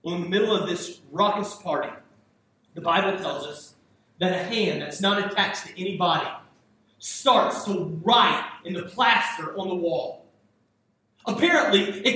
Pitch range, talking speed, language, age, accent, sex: 205-295 Hz, 155 wpm, English, 30-49, American, male